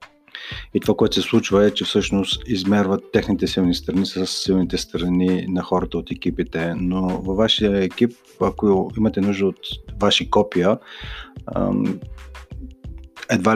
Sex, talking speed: male, 135 wpm